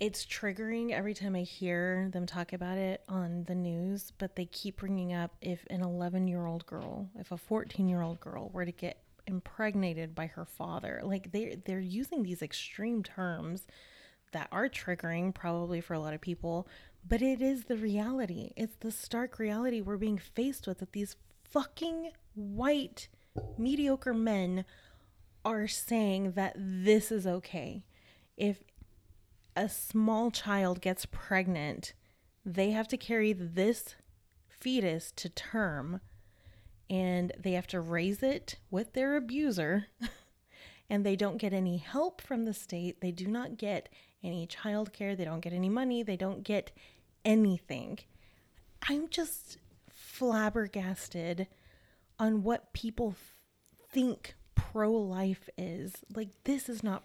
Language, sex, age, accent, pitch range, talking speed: English, female, 20-39, American, 180-220 Hz, 145 wpm